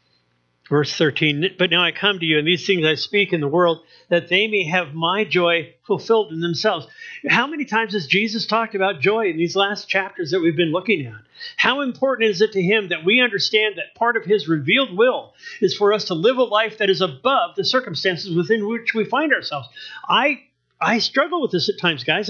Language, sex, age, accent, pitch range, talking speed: English, male, 50-69, American, 175-235 Hz, 220 wpm